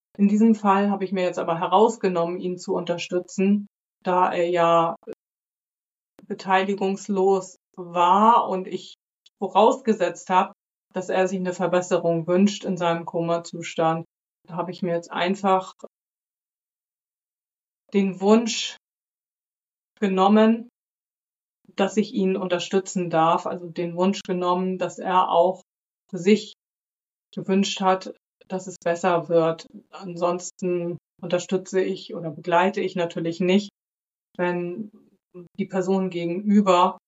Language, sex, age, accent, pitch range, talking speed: German, female, 30-49, German, 170-195 Hz, 115 wpm